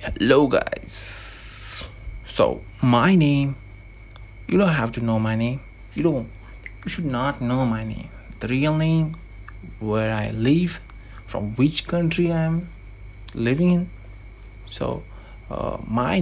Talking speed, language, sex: 135 wpm, English, male